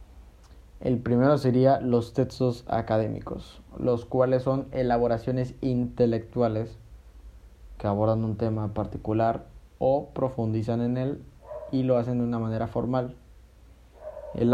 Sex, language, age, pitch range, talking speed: male, Spanish, 20-39, 105-130 Hz, 115 wpm